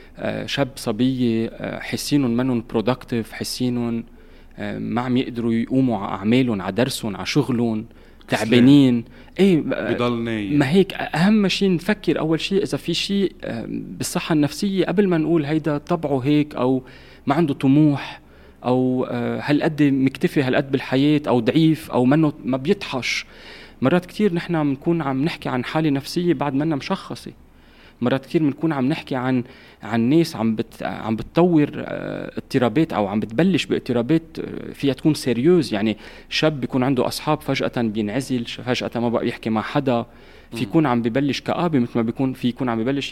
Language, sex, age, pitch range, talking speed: Arabic, male, 30-49, 120-155 Hz, 150 wpm